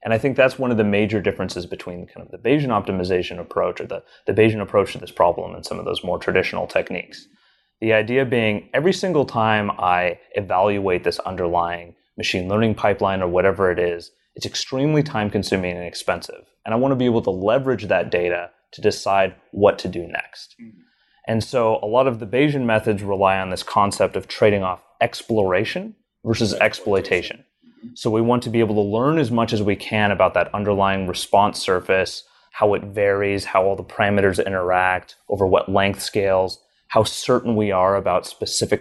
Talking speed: 190 wpm